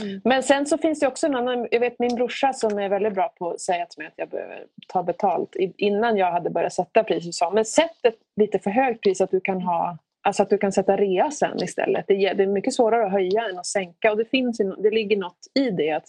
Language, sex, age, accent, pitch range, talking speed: Swedish, female, 30-49, native, 200-255 Hz, 255 wpm